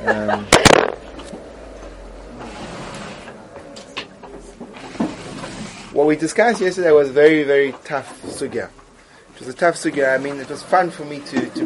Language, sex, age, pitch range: English, male, 30-49, 130-170 Hz